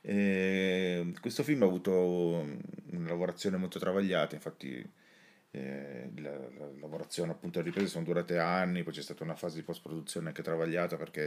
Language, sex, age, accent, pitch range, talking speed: Italian, male, 30-49, native, 80-90 Hz, 160 wpm